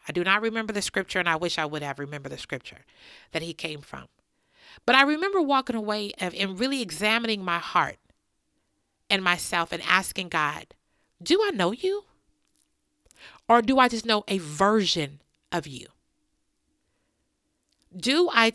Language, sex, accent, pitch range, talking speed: English, female, American, 175-250 Hz, 160 wpm